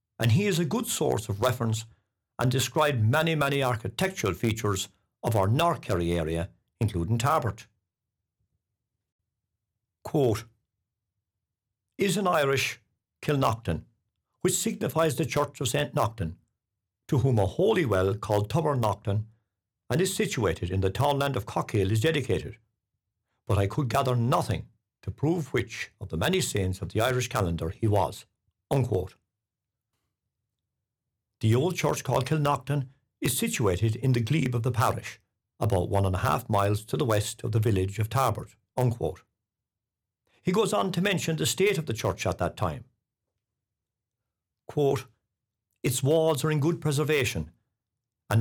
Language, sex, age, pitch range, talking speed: English, male, 60-79, 105-135 Hz, 145 wpm